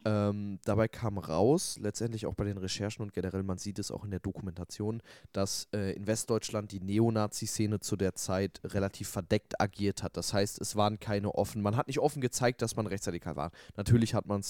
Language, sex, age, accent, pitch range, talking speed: German, male, 20-39, German, 100-115 Hz, 205 wpm